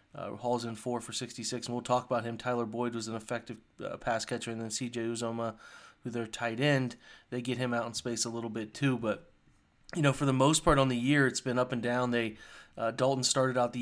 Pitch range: 115-130 Hz